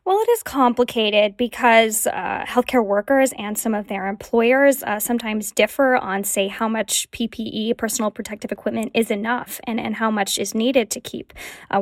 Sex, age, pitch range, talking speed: female, 10-29, 200-235 Hz, 180 wpm